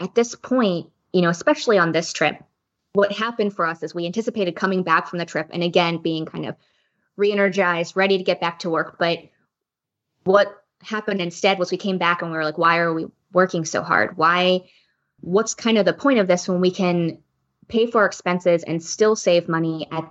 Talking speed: 210 wpm